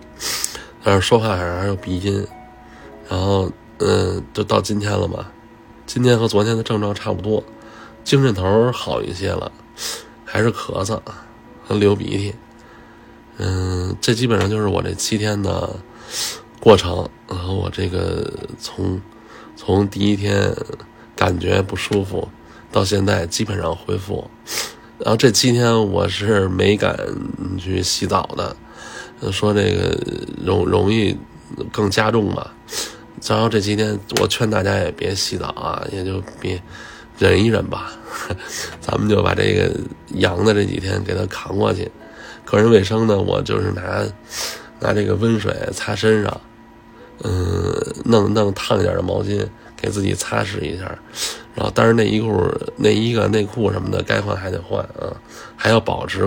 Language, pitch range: Chinese, 95-110 Hz